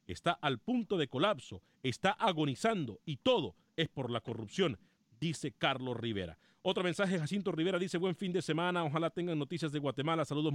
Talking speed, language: 175 wpm, Spanish